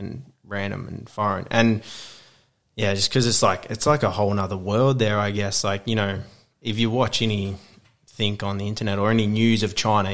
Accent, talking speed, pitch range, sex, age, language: Australian, 200 wpm, 100-115 Hz, male, 20-39, English